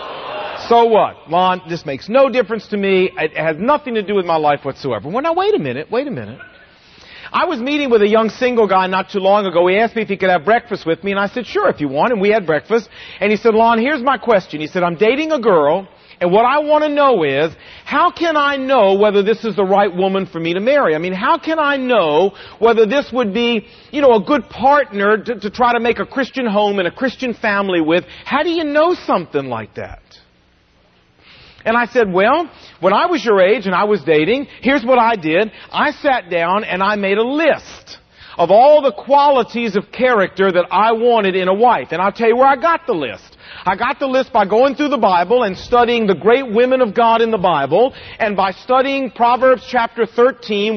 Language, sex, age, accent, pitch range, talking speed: English, male, 50-69, American, 195-255 Hz, 235 wpm